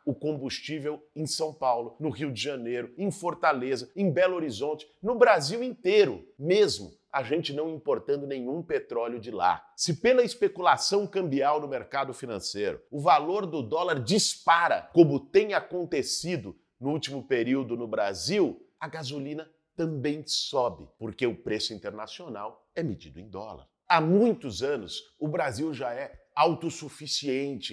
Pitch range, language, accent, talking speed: 140-195 Hz, Portuguese, Brazilian, 145 wpm